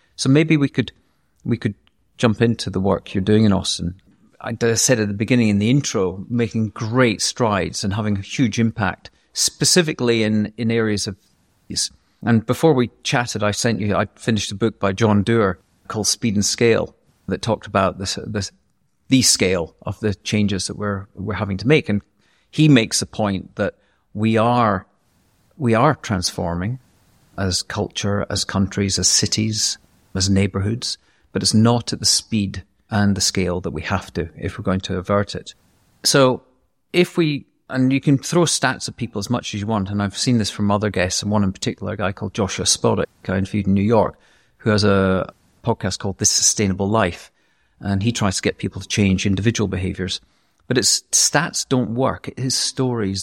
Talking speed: 190 wpm